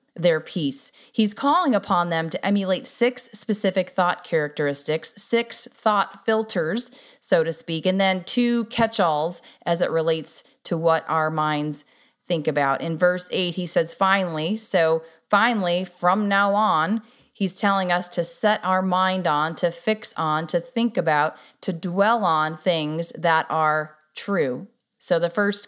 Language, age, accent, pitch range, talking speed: English, 30-49, American, 170-225 Hz, 155 wpm